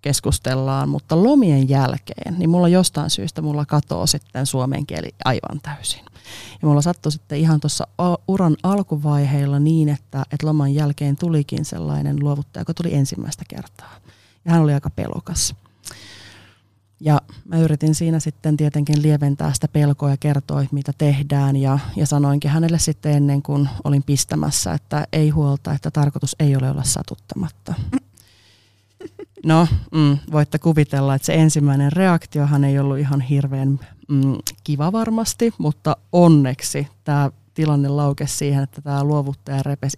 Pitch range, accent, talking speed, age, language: 135-155 Hz, native, 145 wpm, 30-49, Finnish